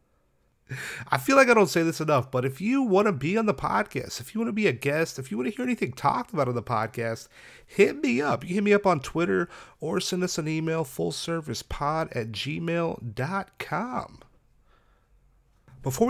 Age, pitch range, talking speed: 30-49, 140-210 Hz, 200 wpm